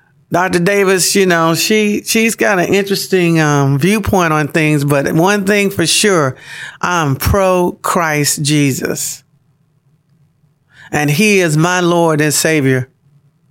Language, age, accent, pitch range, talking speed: English, 50-69, American, 140-160 Hz, 130 wpm